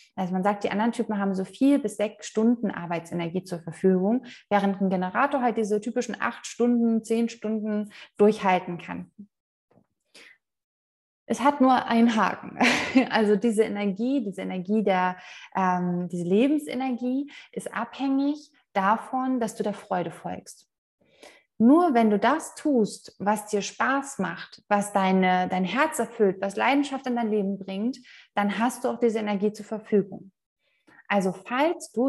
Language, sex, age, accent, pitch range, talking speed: German, female, 20-39, German, 190-245 Hz, 145 wpm